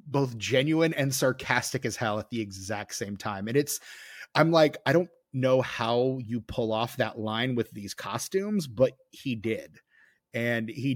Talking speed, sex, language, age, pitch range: 175 wpm, male, English, 30-49, 110-135 Hz